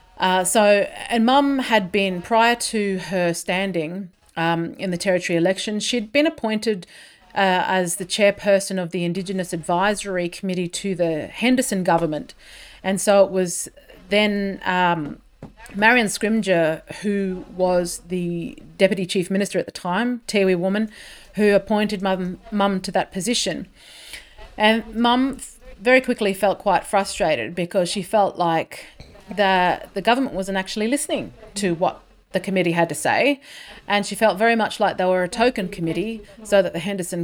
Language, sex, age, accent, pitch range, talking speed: English, female, 30-49, Australian, 180-215 Hz, 155 wpm